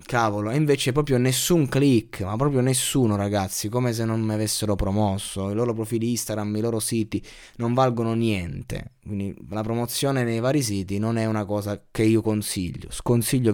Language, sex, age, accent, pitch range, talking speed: Italian, male, 20-39, native, 105-130 Hz, 175 wpm